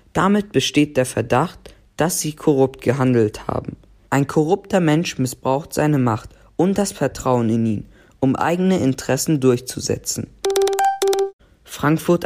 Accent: German